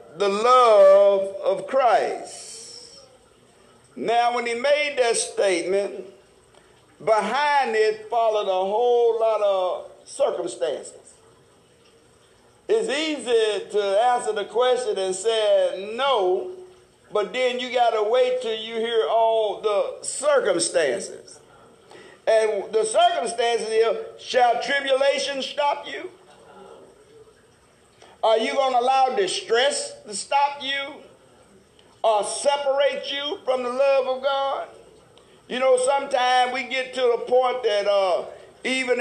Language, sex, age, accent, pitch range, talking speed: English, male, 60-79, American, 225-370 Hz, 115 wpm